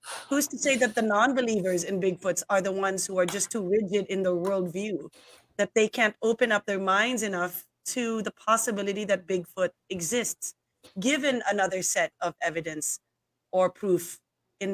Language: English